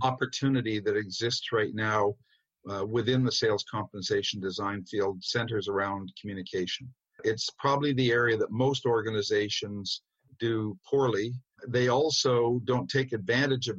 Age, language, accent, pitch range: 50-69, English, American, 105-135 Hz